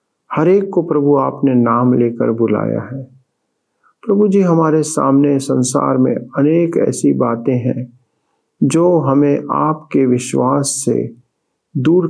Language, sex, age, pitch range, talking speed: Hindi, male, 50-69, 120-150 Hz, 120 wpm